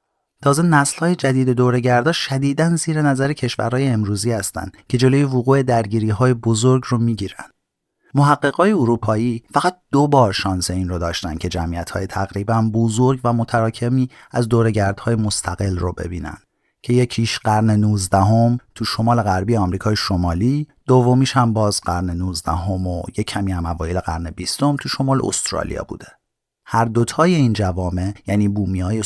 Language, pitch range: Persian, 100-135 Hz